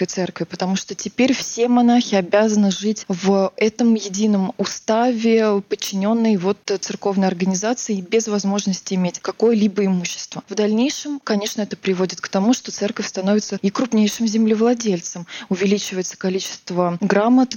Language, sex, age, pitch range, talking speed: Russian, female, 20-39, 190-225 Hz, 125 wpm